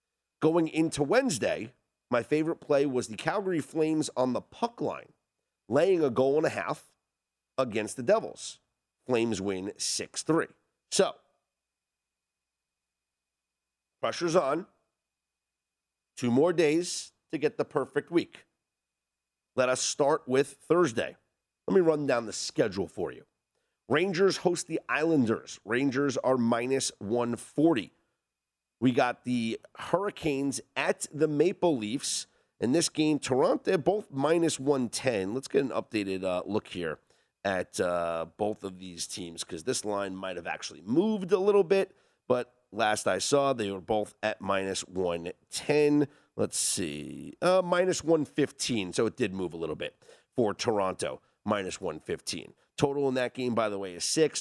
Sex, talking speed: male, 145 wpm